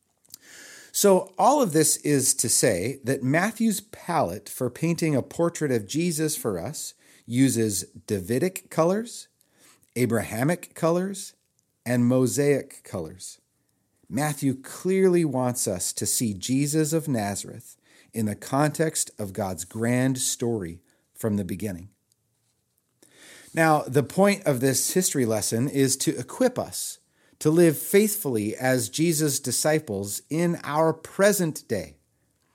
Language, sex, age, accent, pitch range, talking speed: English, male, 40-59, American, 115-165 Hz, 120 wpm